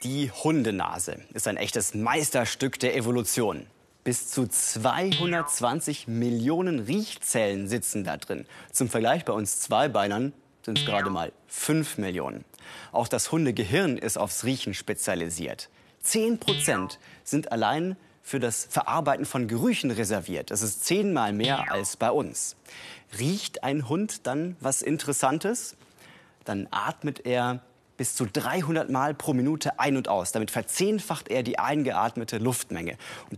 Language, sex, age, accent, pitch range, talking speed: German, male, 30-49, German, 110-155 Hz, 135 wpm